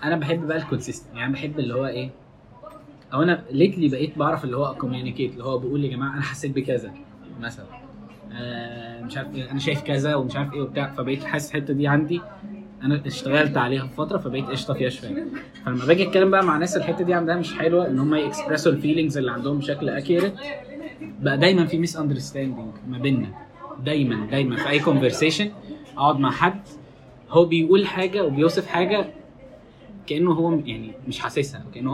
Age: 10-29